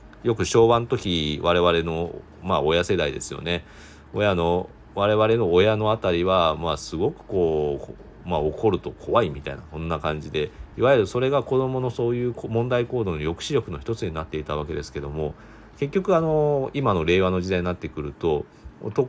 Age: 40-59